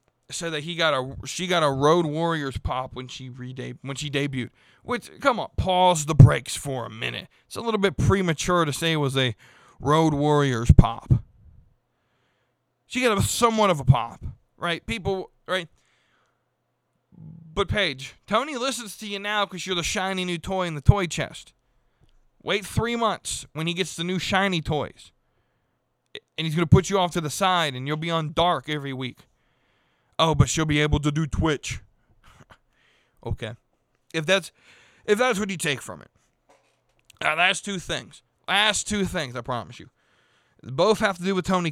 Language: English